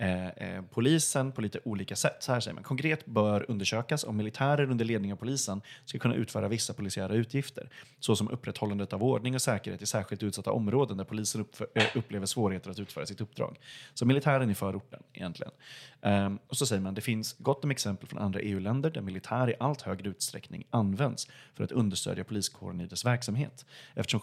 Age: 30-49